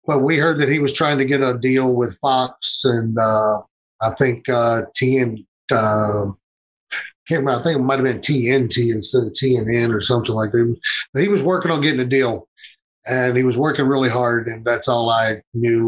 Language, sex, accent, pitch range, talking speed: English, male, American, 115-135 Hz, 205 wpm